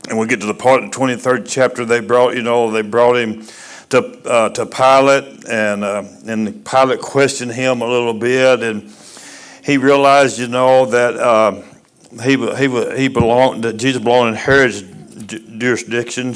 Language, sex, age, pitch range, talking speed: English, male, 60-79, 115-135 Hz, 170 wpm